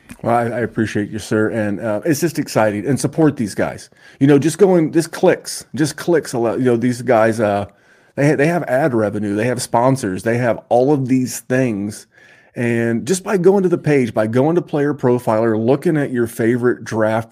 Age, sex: 30-49, male